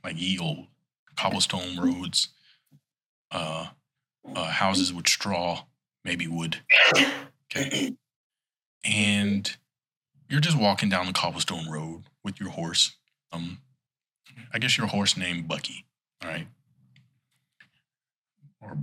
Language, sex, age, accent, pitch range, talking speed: English, male, 20-39, American, 95-145 Hz, 110 wpm